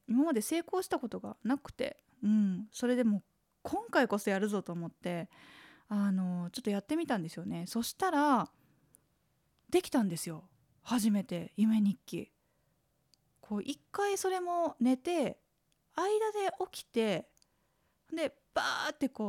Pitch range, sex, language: 185-265 Hz, female, Japanese